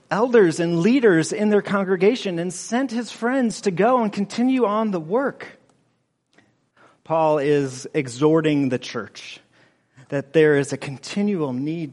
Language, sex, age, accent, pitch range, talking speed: English, male, 40-59, American, 135-180 Hz, 140 wpm